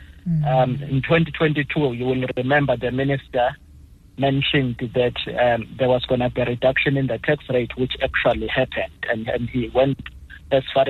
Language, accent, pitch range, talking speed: English, South African, 120-135 Hz, 170 wpm